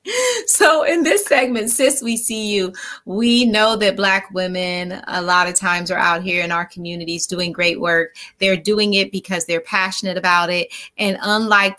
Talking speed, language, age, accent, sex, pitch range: 185 wpm, English, 30-49, American, female, 180-225 Hz